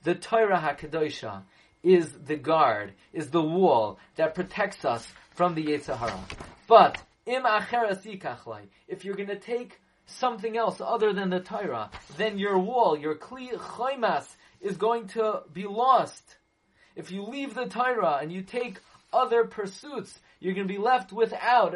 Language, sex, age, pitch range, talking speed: English, male, 30-49, 125-200 Hz, 150 wpm